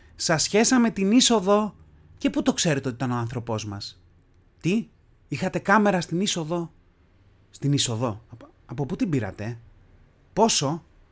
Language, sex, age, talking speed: Greek, male, 30-49, 140 wpm